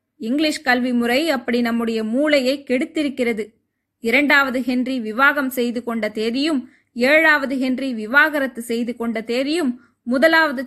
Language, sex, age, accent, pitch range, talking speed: Tamil, female, 20-39, native, 245-285 Hz, 110 wpm